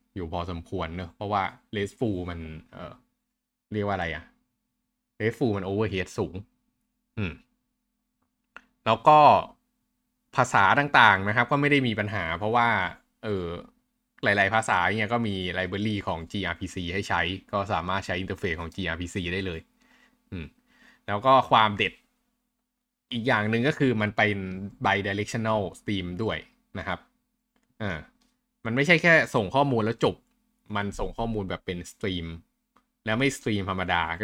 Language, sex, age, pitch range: Thai, male, 20-39, 95-135 Hz